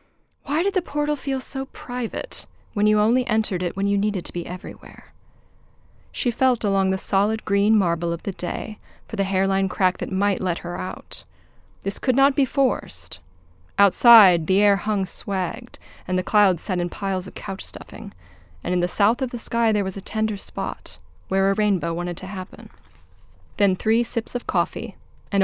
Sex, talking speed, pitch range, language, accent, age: female, 190 wpm, 180-225 Hz, English, American, 20-39